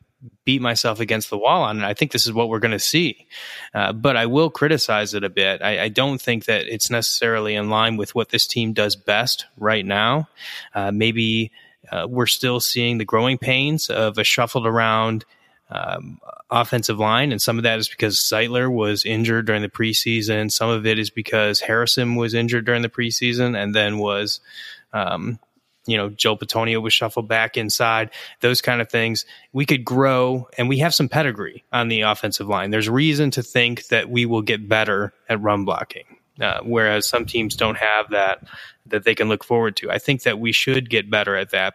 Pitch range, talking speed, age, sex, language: 110-125 Hz, 205 wpm, 20-39, male, English